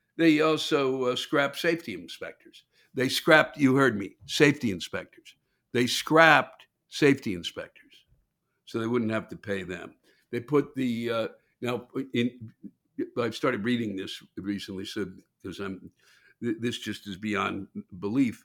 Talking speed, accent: 145 wpm, American